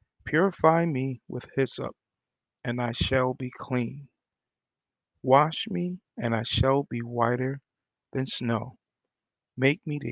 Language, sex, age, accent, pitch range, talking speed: English, male, 40-59, American, 120-145 Hz, 125 wpm